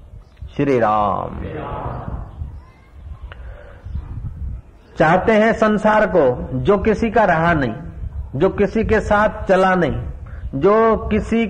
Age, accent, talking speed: 50-69, native, 100 wpm